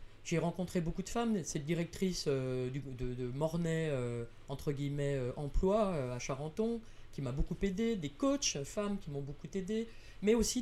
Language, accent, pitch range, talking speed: French, French, 140-210 Hz, 190 wpm